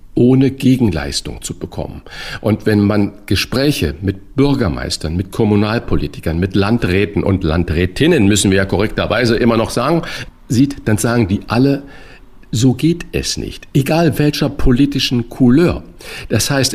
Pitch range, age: 95-130 Hz, 50-69